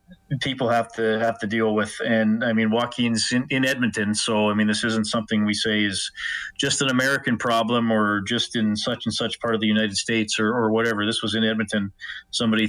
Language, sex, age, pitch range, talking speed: English, male, 30-49, 110-150 Hz, 220 wpm